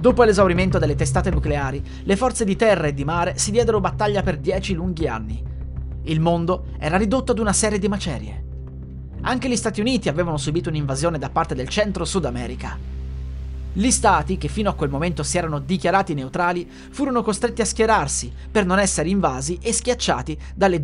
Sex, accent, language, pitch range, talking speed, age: male, native, Italian, 145-215 Hz, 180 wpm, 30-49